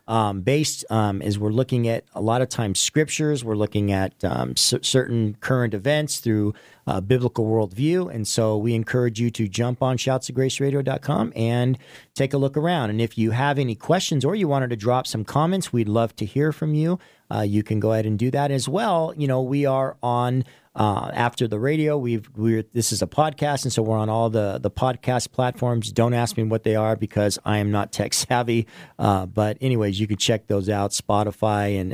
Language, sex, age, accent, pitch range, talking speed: English, male, 40-59, American, 110-140 Hz, 210 wpm